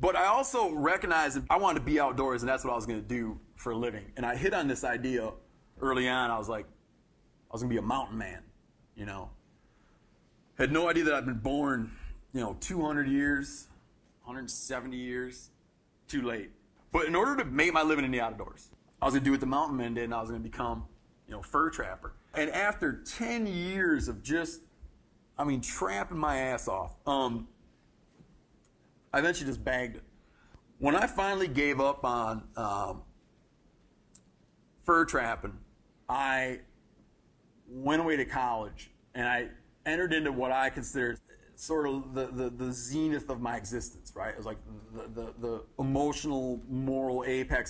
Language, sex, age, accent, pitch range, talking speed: English, male, 30-49, American, 115-140 Hz, 175 wpm